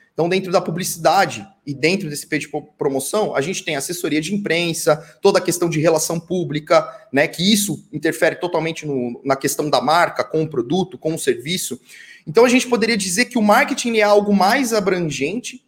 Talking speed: 190 wpm